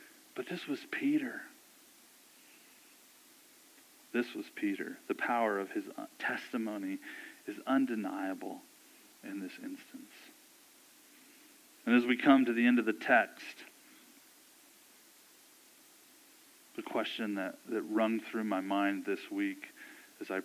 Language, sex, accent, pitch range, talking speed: English, male, American, 280-325 Hz, 115 wpm